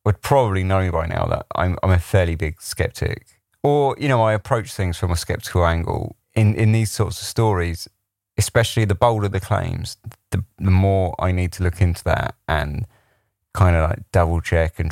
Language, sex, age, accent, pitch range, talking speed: English, male, 30-49, British, 90-110 Hz, 195 wpm